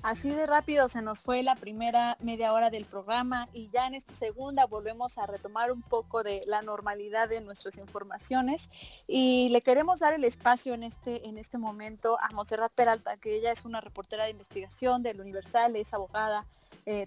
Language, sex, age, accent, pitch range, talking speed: English, female, 30-49, Mexican, 210-240 Hz, 185 wpm